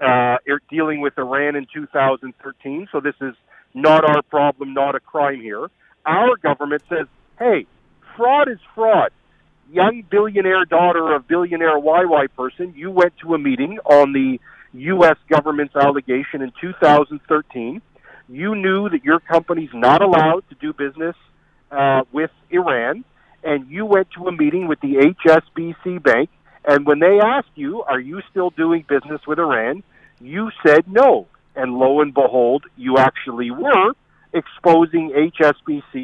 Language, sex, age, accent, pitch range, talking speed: English, male, 50-69, American, 140-180 Hz, 150 wpm